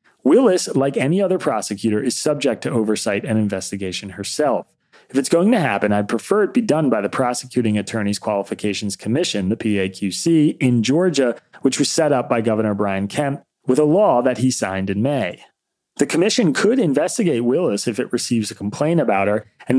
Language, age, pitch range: English, 30-49, 105-135 Hz